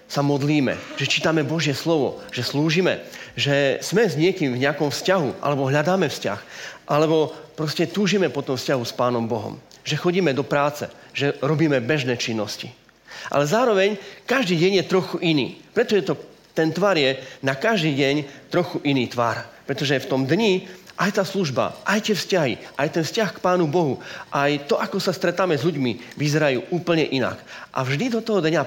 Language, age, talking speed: Slovak, 30-49, 180 wpm